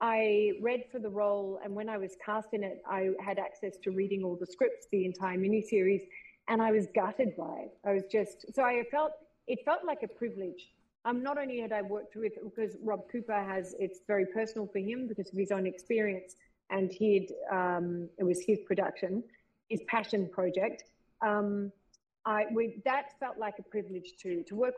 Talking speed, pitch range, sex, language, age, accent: 200 wpm, 195-235 Hz, female, English, 40-59, Australian